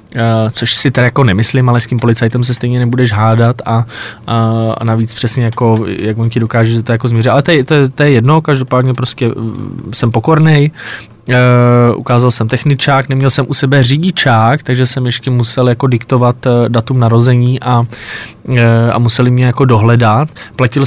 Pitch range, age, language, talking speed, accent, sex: 115-145 Hz, 20-39, Czech, 185 wpm, native, male